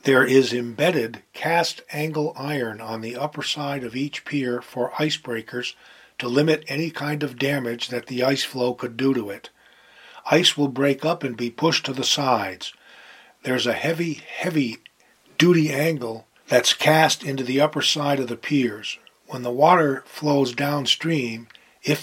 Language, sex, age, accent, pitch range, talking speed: English, male, 40-59, American, 125-155 Hz, 165 wpm